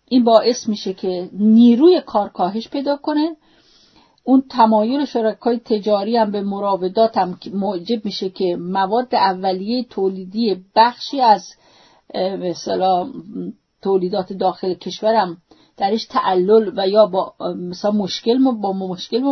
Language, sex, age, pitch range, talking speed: English, female, 40-59, 195-255 Hz, 110 wpm